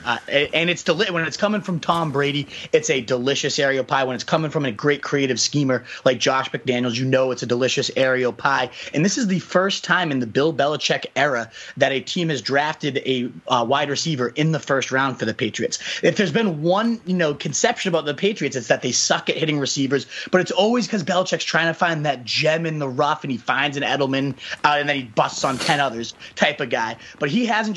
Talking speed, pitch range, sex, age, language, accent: 235 wpm, 130-170 Hz, male, 30-49, English, American